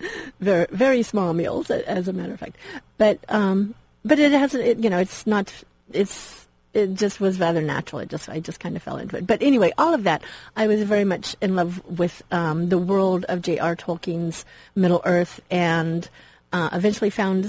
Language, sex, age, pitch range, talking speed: English, female, 40-59, 180-215 Hz, 200 wpm